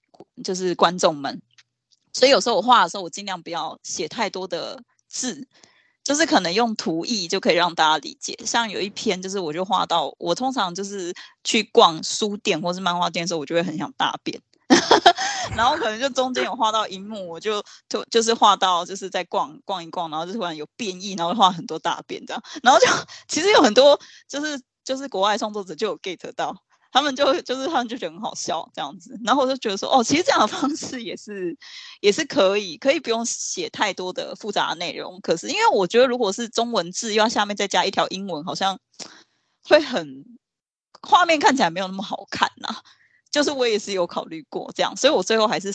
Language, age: Chinese, 20-39